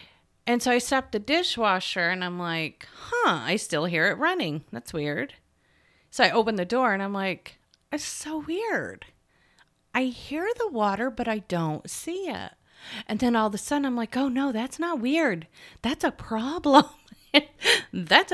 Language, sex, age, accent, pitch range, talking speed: English, female, 30-49, American, 160-255 Hz, 175 wpm